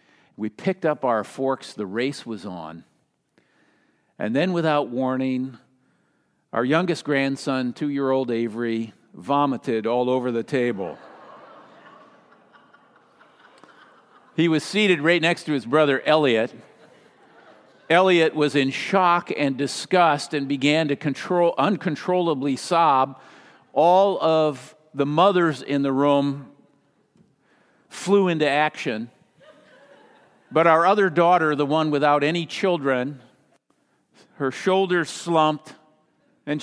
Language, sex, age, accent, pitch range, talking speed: English, male, 50-69, American, 125-160 Hz, 110 wpm